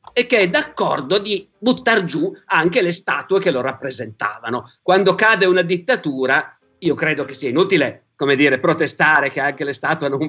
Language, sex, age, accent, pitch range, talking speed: Italian, male, 50-69, native, 150-190 Hz, 180 wpm